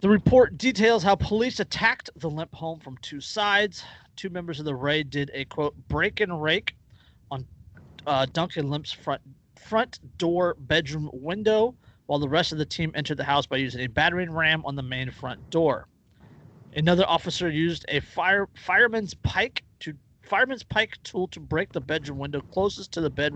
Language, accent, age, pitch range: English, American, 30-49, 140-185 Hz